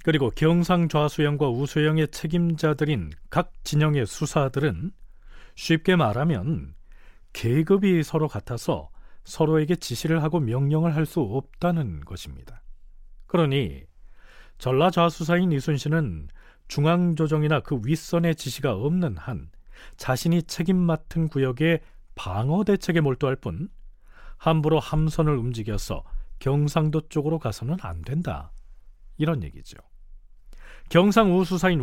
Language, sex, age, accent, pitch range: Korean, male, 40-59, native, 120-170 Hz